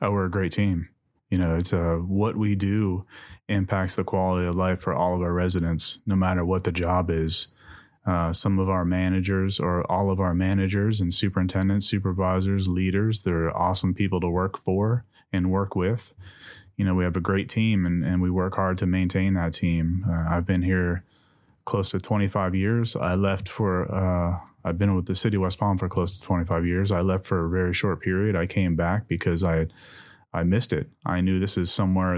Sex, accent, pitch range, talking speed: male, American, 85-95 Hz, 210 wpm